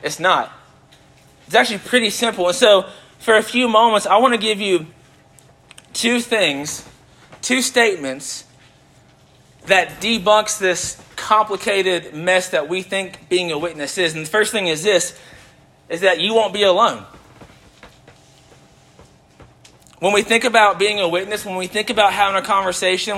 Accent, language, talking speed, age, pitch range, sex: American, English, 155 wpm, 30-49, 150-215 Hz, male